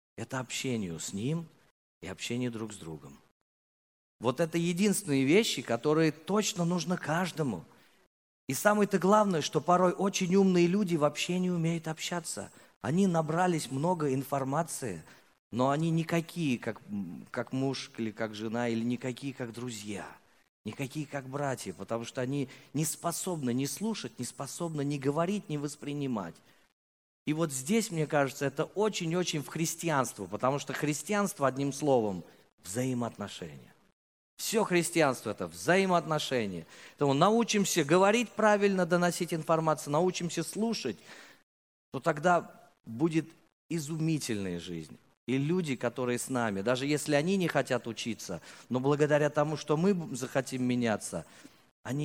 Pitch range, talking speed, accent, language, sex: 125-170 Hz, 130 wpm, native, Russian, male